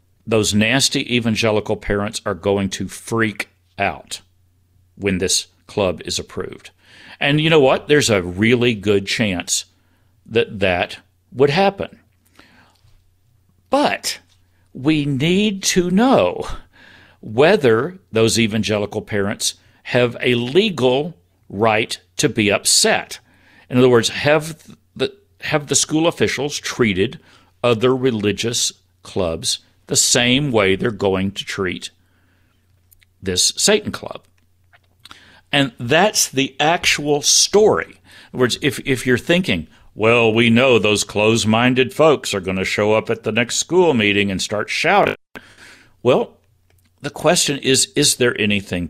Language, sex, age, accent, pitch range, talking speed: English, male, 60-79, American, 95-130 Hz, 130 wpm